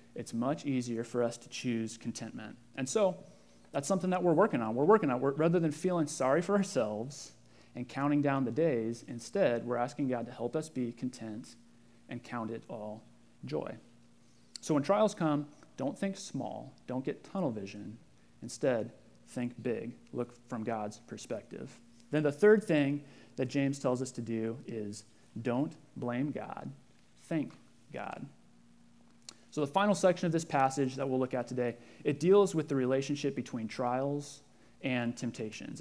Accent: American